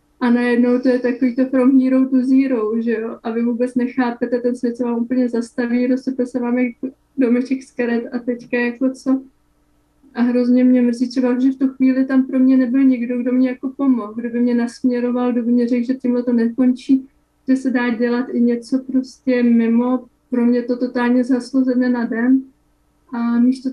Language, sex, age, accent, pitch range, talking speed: Czech, female, 20-39, native, 240-260 Hz, 200 wpm